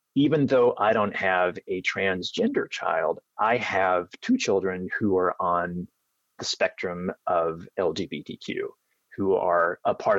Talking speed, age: 135 wpm, 30-49